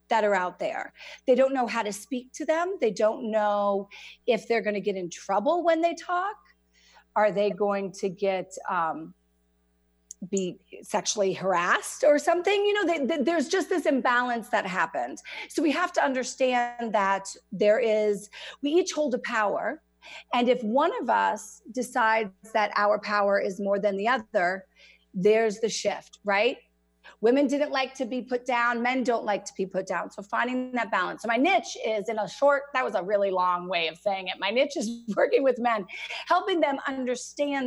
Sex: female